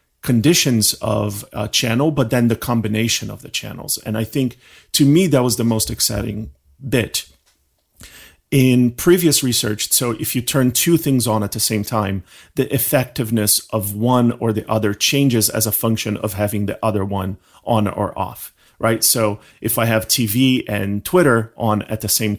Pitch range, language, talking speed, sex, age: 105-125 Hz, English, 180 wpm, male, 40-59